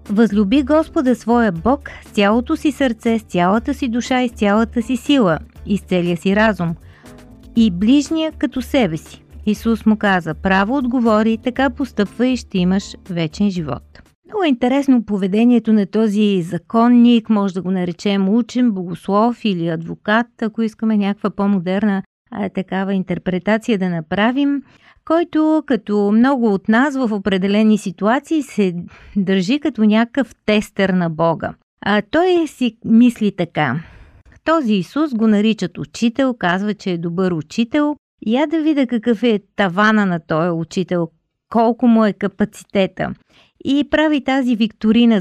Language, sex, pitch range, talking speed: Bulgarian, female, 190-250 Hz, 145 wpm